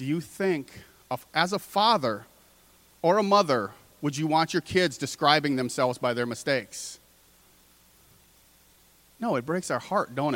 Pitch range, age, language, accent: 120-170 Hz, 40-59, English, American